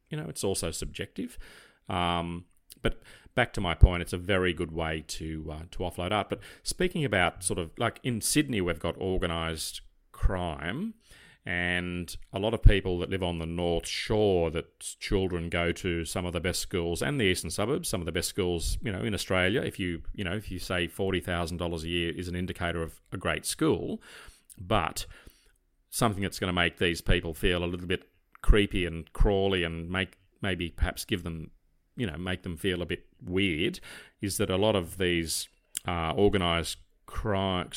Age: 40-59